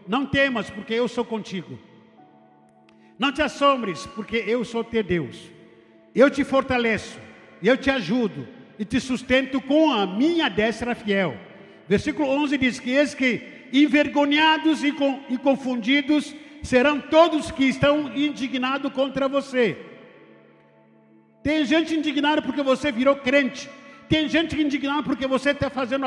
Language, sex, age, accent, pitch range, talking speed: Portuguese, male, 50-69, Brazilian, 230-295 Hz, 135 wpm